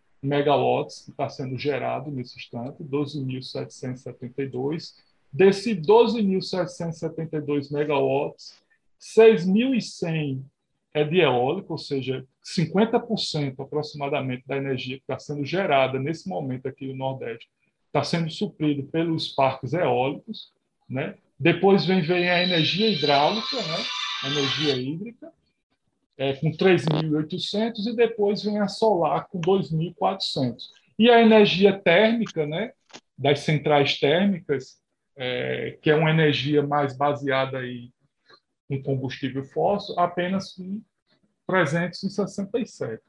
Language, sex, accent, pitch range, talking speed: Portuguese, male, Brazilian, 140-200 Hz, 110 wpm